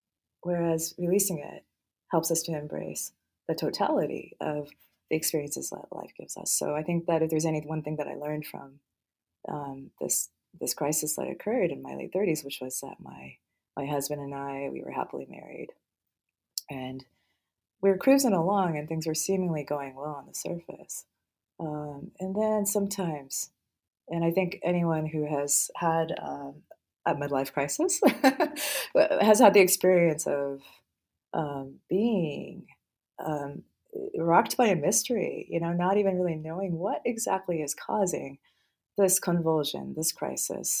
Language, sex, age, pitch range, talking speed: English, female, 30-49, 140-175 Hz, 155 wpm